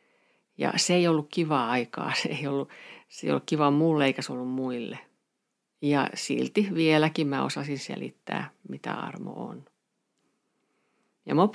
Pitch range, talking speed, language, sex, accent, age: 130-155 Hz, 135 wpm, Finnish, female, native, 50-69